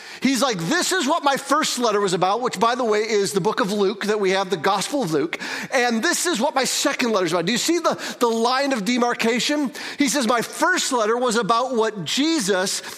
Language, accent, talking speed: English, American, 240 wpm